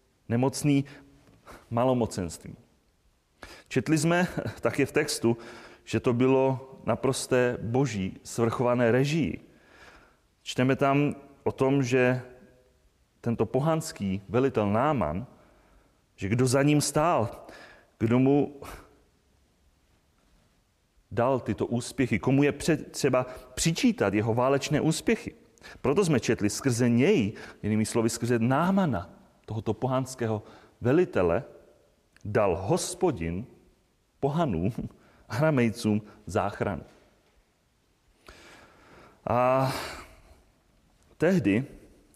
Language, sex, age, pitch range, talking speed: Czech, male, 30-49, 105-140 Hz, 90 wpm